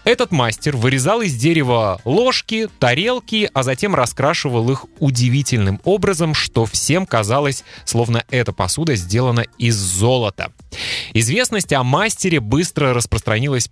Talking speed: 120 wpm